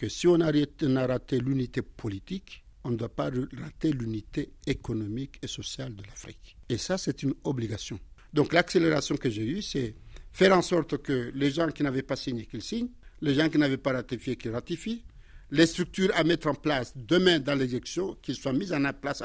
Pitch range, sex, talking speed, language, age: 120-160 Hz, male, 195 wpm, French, 60-79